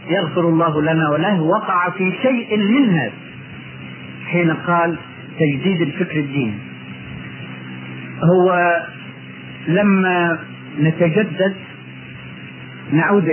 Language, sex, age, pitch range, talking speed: Arabic, male, 50-69, 140-175 Hz, 80 wpm